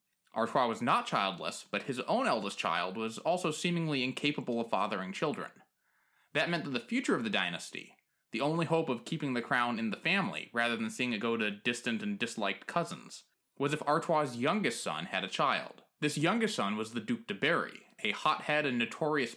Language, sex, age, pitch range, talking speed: English, male, 20-39, 120-170 Hz, 200 wpm